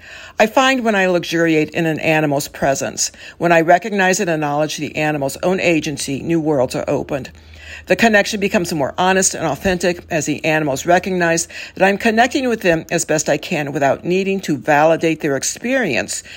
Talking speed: 175 wpm